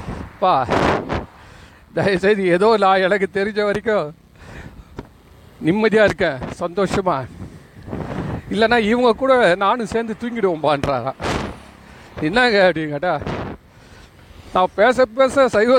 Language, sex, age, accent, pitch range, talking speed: Tamil, male, 40-59, native, 160-215 Hz, 85 wpm